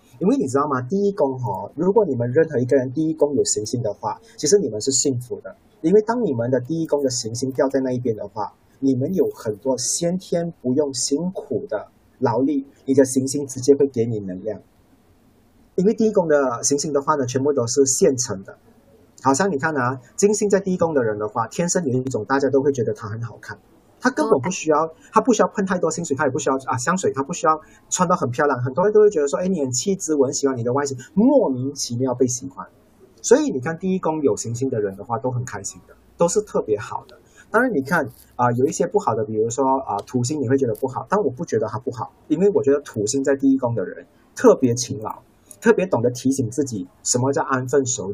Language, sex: Chinese, male